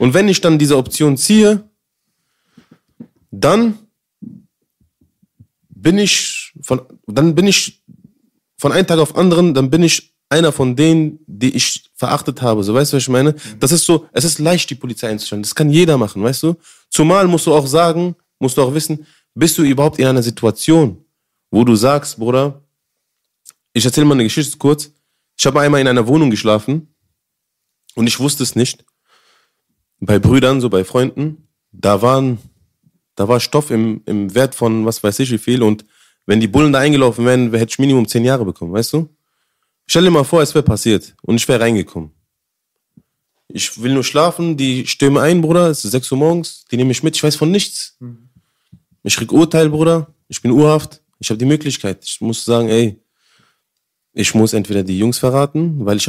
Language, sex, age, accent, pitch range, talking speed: German, male, 30-49, German, 115-160 Hz, 190 wpm